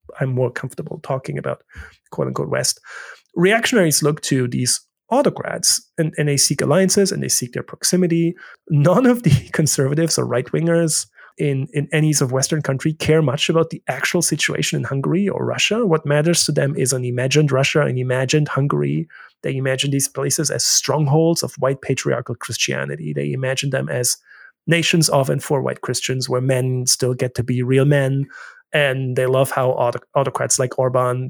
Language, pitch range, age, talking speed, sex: English, 130-165 Hz, 30-49, 175 wpm, male